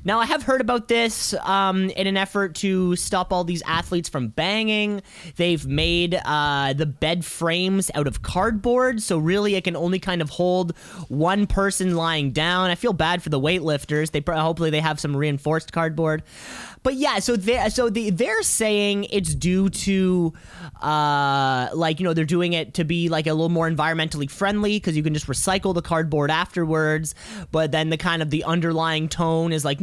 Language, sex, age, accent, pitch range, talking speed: English, male, 20-39, American, 155-200 Hz, 190 wpm